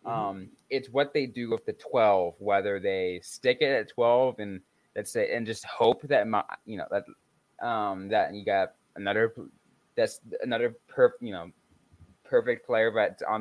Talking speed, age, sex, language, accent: 165 wpm, 20-39, male, English, American